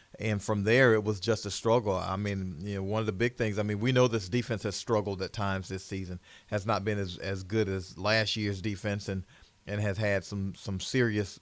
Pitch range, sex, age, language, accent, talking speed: 100-110 Hz, male, 40-59, English, American, 240 wpm